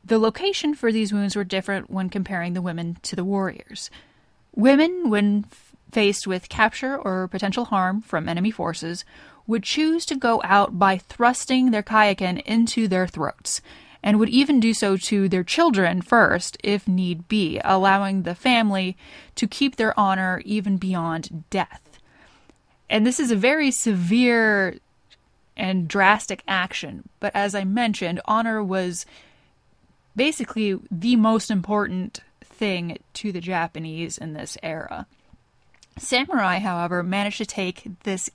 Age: 20-39